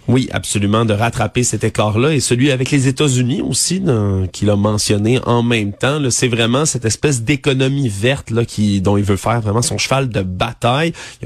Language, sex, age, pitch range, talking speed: French, male, 30-49, 110-135 Hz, 205 wpm